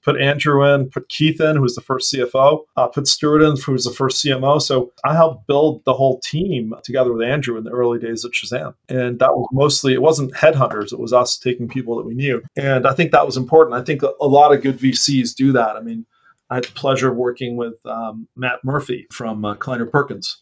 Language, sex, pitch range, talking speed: English, male, 120-140 Hz, 240 wpm